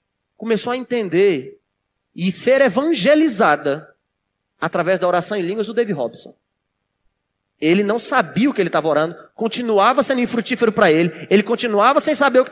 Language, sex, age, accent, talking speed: Portuguese, male, 30-49, Brazilian, 160 wpm